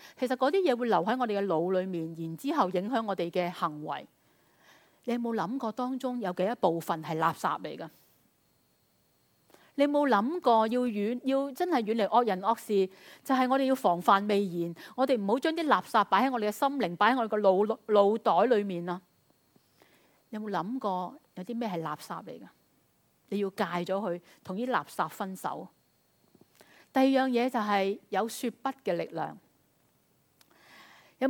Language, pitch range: Chinese, 185-255 Hz